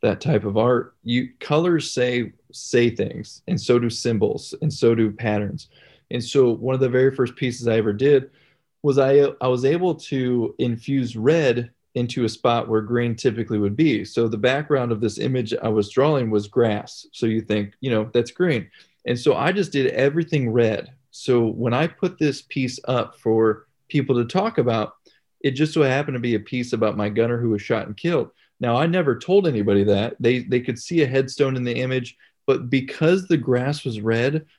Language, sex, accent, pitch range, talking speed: English, male, American, 115-145 Hz, 205 wpm